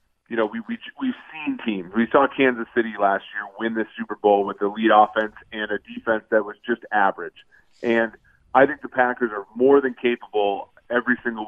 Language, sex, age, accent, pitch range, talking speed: English, male, 30-49, American, 110-130 Hz, 205 wpm